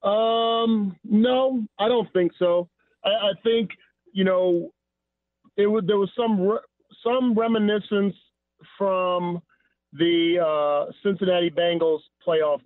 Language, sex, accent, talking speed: English, male, American, 115 wpm